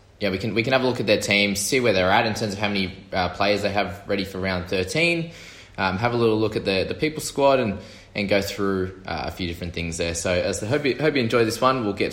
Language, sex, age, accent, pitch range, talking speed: English, male, 20-39, Australian, 95-115 Hz, 295 wpm